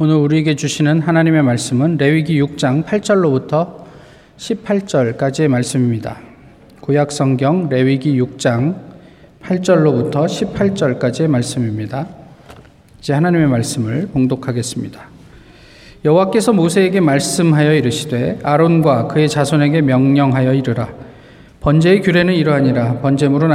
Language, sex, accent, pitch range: Korean, male, native, 135-165 Hz